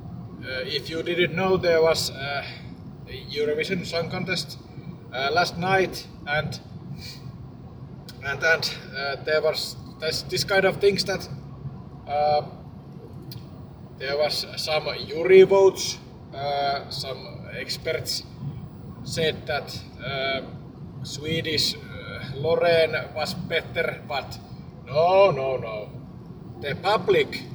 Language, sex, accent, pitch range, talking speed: Finnish, male, native, 135-170 Hz, 110 wpm